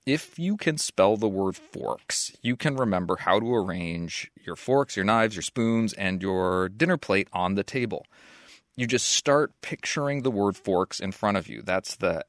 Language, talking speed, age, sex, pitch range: English, 190 wpm, 30-49, male, 95-125 Hz